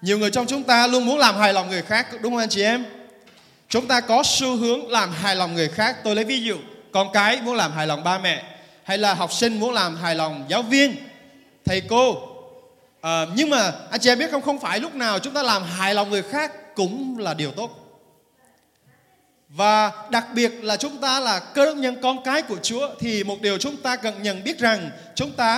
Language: Vietnamese